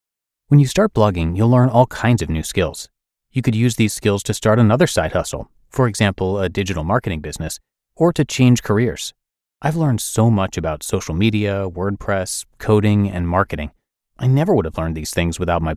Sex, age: male, 30-49